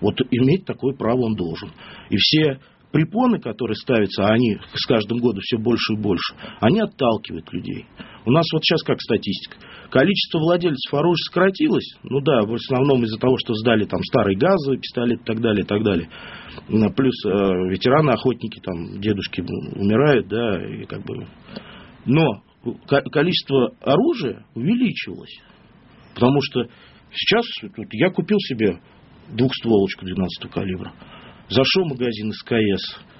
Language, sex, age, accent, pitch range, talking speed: Russian, male, 40-59, native, 105-140 Hz, 140 wpm